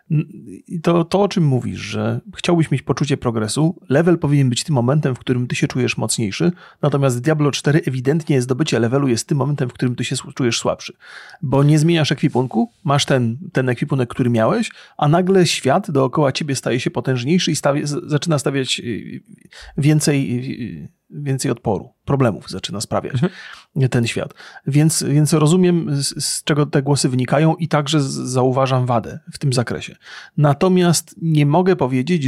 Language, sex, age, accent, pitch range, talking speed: Polish, male, 30-49, native, 130-165 Hz, 160 wpm